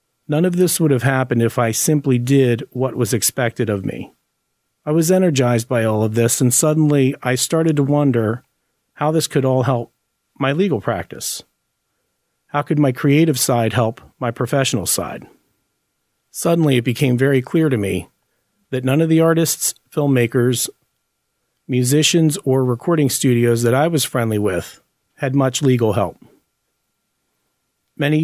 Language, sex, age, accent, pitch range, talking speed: English, male, 40-59, American, 120-145 Hz, 155 wpm